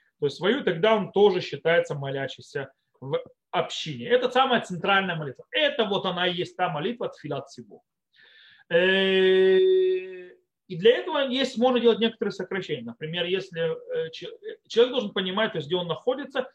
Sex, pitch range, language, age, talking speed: male, 180-255 Hz, Russian, 30-49, 150 wpm